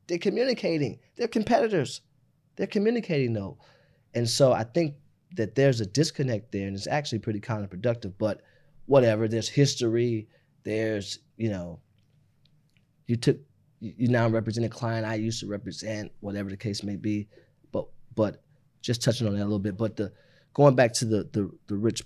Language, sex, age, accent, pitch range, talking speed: English, male, 20-39, American, 110-140 Hz, 170 wpm